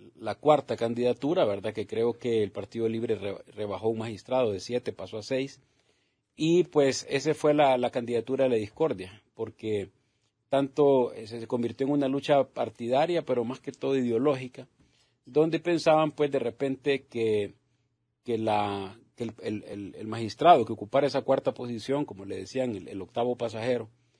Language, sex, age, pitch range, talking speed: Spanish, male, 40-59, 110-135 Hz, 165 wpm